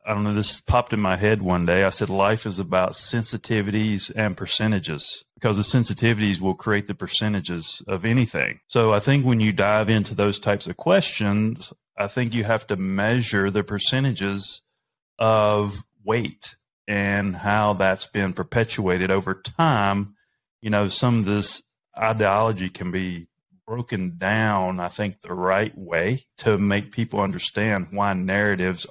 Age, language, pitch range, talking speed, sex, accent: 30-49, English, 100-115 Hz, 160 wpm, male, American